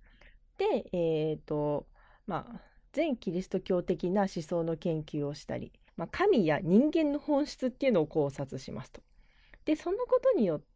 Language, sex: Japanese, female